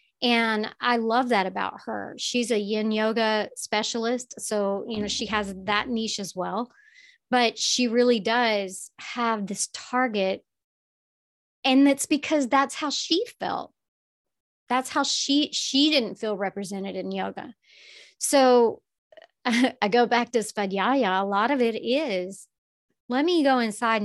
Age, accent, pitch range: 30-49, American, 205-255 Hz